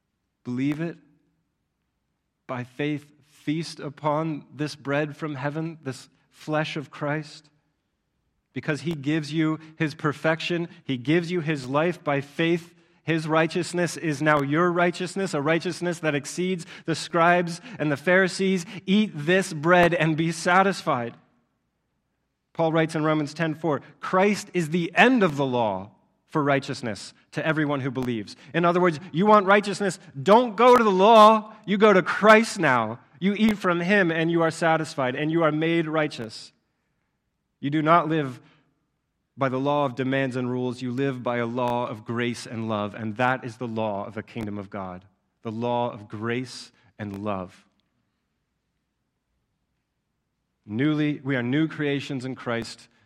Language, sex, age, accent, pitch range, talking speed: English, male, 30-49, American, 130-170 Hz, 155 wpm